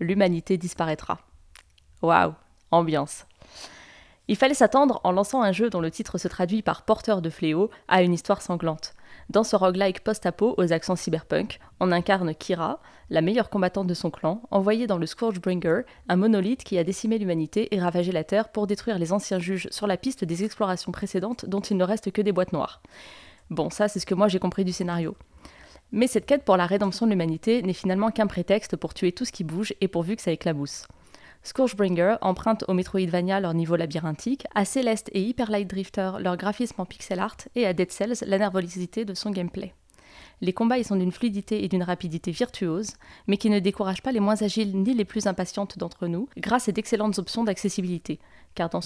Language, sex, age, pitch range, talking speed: French, female, 20-39, 180-215 Hz, 200 wpm